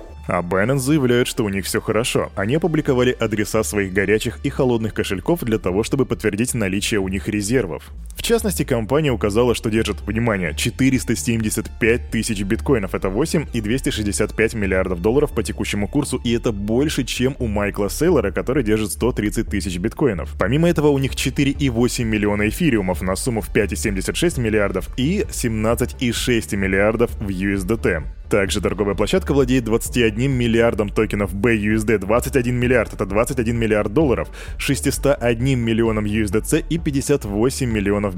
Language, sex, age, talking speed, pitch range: Russian, male, 20-39, 145 wpm, 105-130 Hz